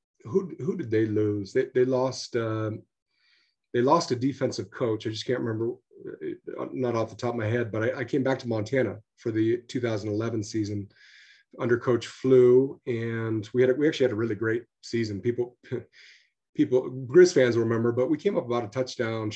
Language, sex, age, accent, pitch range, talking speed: English, male, 30-49, American, 110-130 Hz, 195 wpm